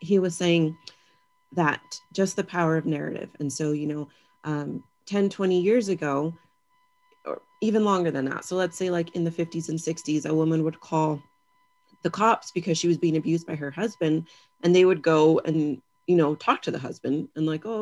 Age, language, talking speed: 30-49, English, 200 wpm